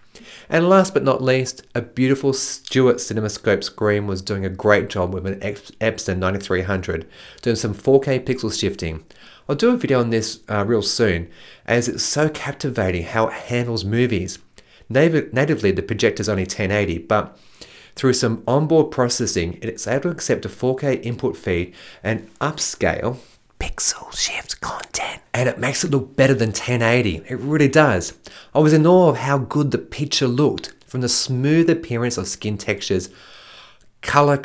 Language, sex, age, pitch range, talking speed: English, male, 30-49, 100-135 Hz, 165 wpm